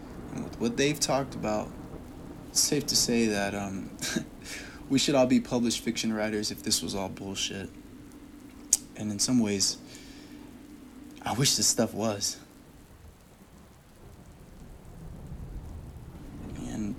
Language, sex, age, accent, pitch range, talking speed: English, male, 20-39, American, 100-120 Hz, 115 wpm